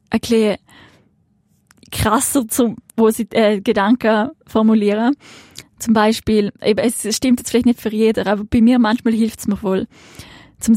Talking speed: 150 wpm